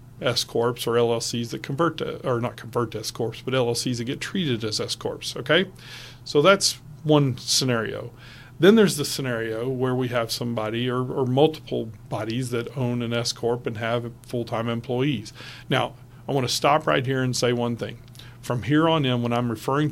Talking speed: 185 wpm